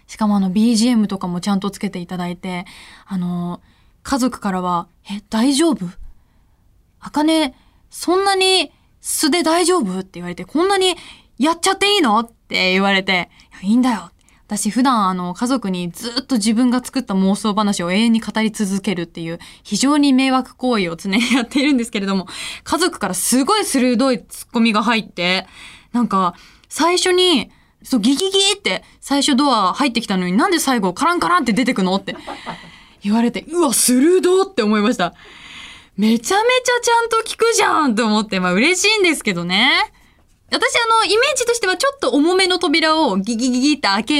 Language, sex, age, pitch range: Japanese, female, 20-39, 195-320 Hz